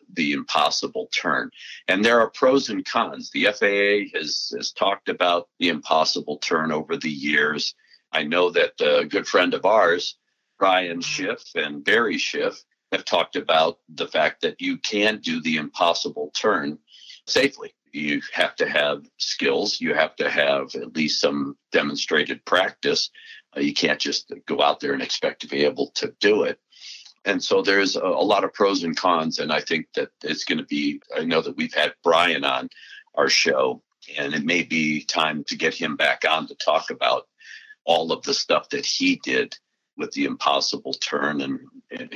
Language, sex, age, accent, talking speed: English, male, 50-69, American, 185 wpm